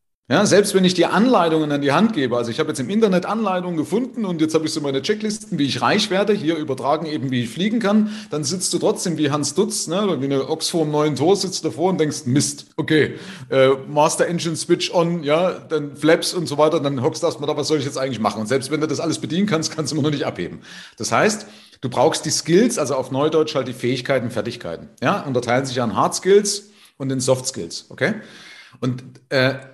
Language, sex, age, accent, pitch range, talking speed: German, male, 40-59, German, 135-190 Hz, 240 wpm